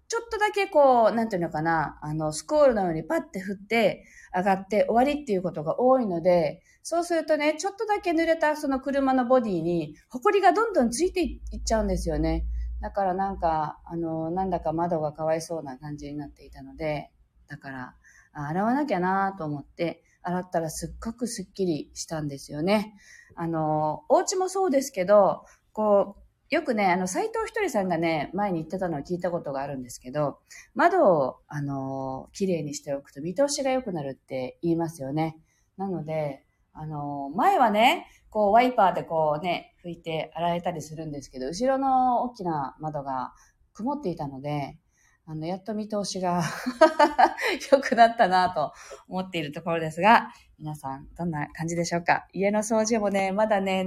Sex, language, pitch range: female, Japanese, 155-235 Hz